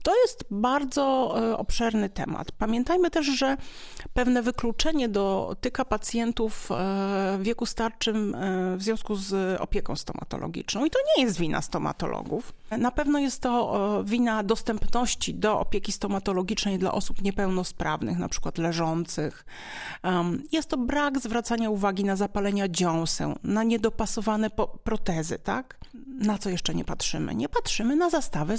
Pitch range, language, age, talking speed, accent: 190-245 Hz, Polish, 40-59, 130 wpm, native